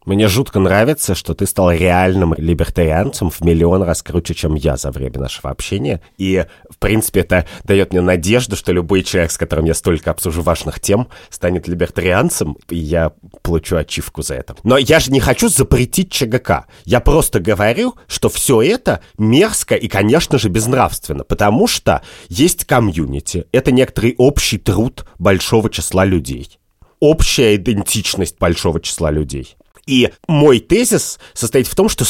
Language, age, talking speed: Russian, 30-49, 155 wpm